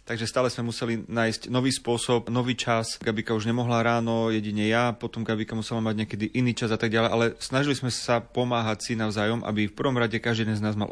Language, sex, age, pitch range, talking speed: Slovak, male, 30-49, 105-115 Hz, 225 wpm